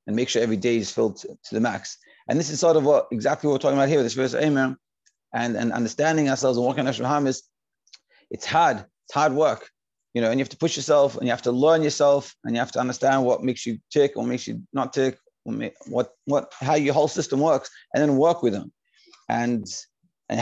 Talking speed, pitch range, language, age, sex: 250 wpm, 130-150 Hz, English, 30-49, male